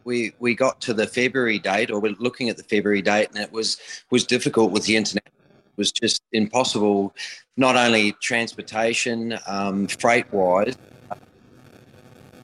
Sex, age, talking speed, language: male, 40-59, 160 wpm, English